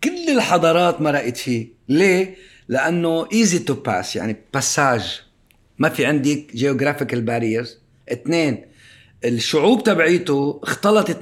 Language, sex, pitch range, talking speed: Arabic, male, 115-160 Hz, 105 wpm